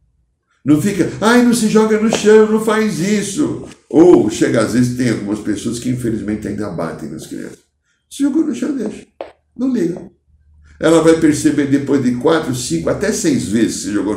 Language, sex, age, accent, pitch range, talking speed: Portuguese, male, 60-79, Brazilian, 110-165 Hz, 190 wpm